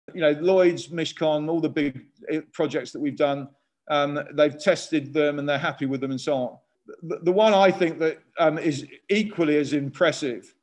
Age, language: 40-59, English